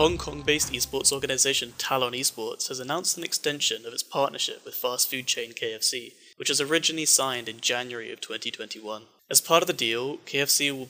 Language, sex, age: English, male, 20-39